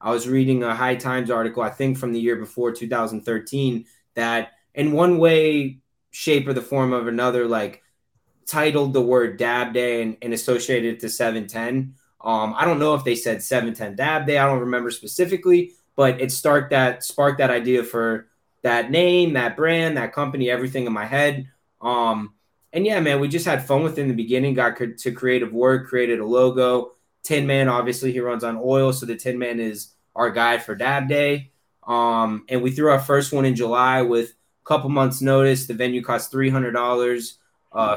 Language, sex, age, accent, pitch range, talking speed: English, male, 20-39, American, 120-140 Hz, 195 wpm